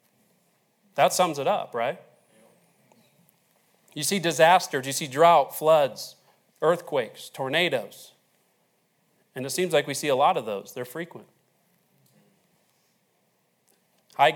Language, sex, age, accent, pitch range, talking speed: English, male, 40-59, American, 175-235 Hz, 115 wpm